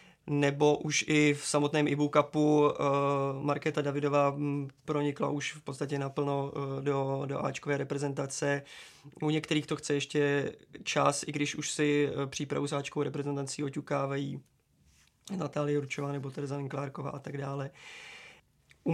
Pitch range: 140-150 Hz